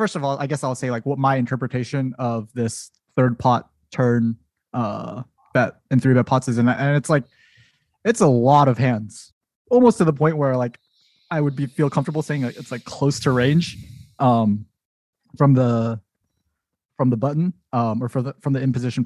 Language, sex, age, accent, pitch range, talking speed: English, male, 20-39, American, 120-140 Hz, 190 wpm